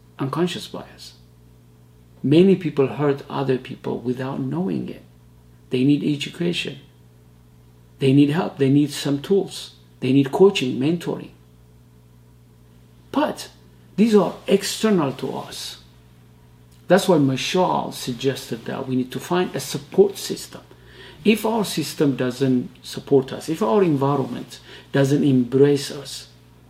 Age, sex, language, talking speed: 50-69, male, English, 120 wpm